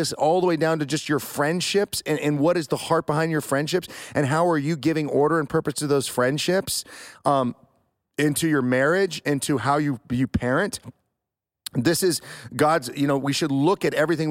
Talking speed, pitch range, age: 195 wpm, 140-170 Hz, 30-49